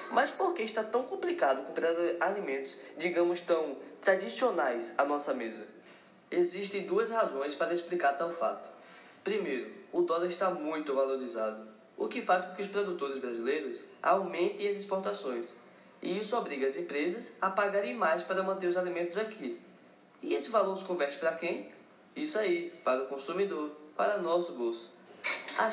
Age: 10-29